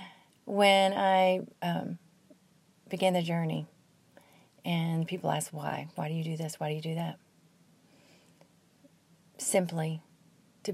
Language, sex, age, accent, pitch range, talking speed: English, female, 40-59, American, 160-190 Hz, 125 wpm